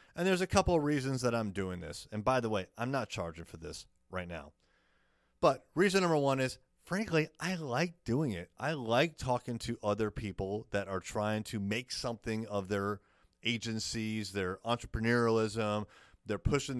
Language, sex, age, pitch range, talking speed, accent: English, male, 30-49, 100-130 Hz, 180 wpm, American